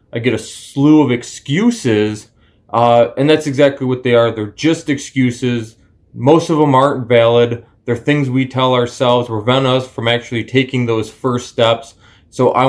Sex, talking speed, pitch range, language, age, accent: male, 170 wpm, 115-140 Hz, English, 20-39, American